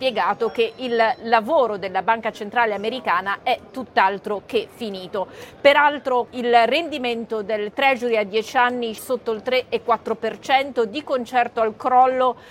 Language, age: Italian, 40-59